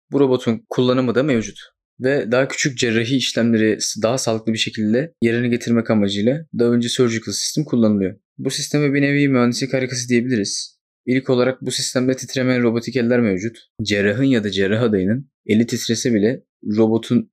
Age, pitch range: 20-39, 105-125 Hz